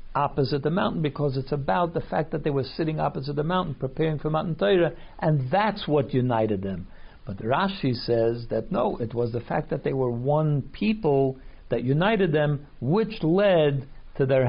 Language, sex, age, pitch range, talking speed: English, male, 60-79, 120-150 Hz, 185 wpm